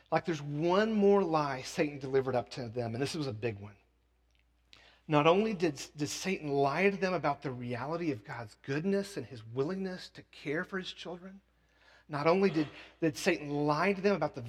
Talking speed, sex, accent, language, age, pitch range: 200 wpm, male, American, English, 40-59, 130-185 Hz